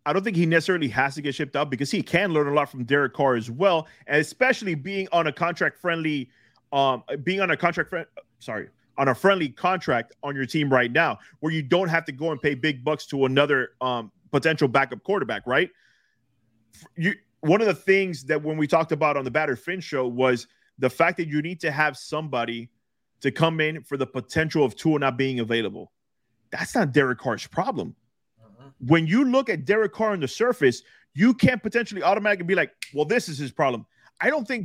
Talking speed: 210 wpm